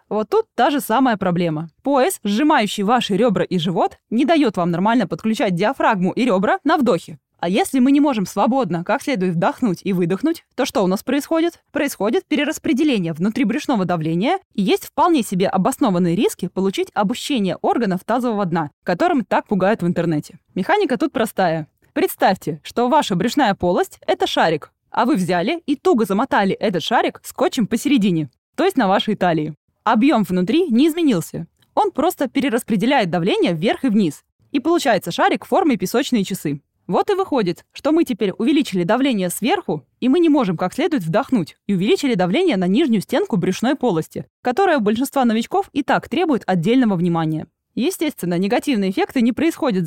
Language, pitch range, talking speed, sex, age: Russian, 185-285 Hz, 170 wpm, female, 20-39